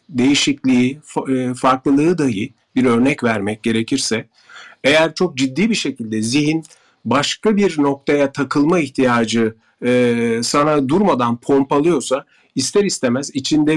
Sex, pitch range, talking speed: male, 125-170 Hz, 105 wpm